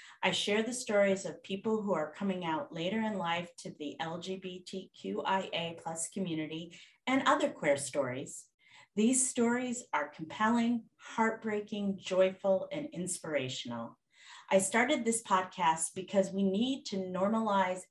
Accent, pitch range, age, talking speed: American, 160-205 Hz, 30-49, 125 wpm